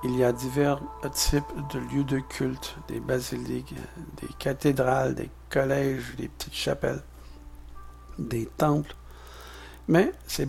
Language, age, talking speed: French, 60-79, 125 wpm